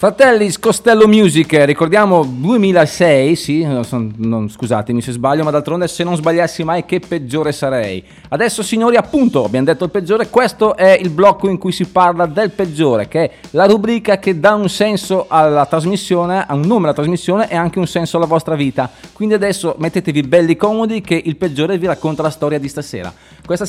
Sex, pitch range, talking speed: male, 150-195 Hz, 185 wpm